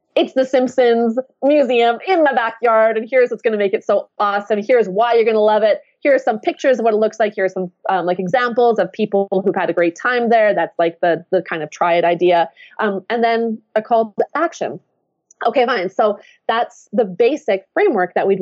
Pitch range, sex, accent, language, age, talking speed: 185-240 Hz, female, American, English, 20-39, 230 wpm